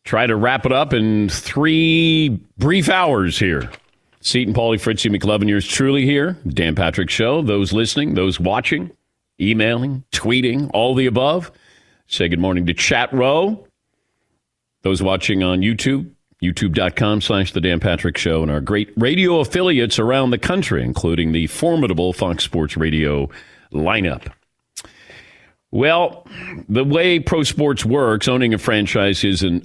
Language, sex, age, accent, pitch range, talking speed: English, male, 40-59, American, 95-125 Hz, 140 wpm